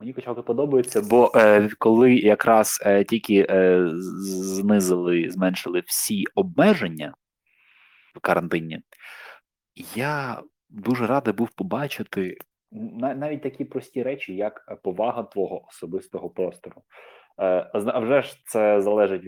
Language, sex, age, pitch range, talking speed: Ukrainian, male, 20-39, 100-135 Hz, 100 wpm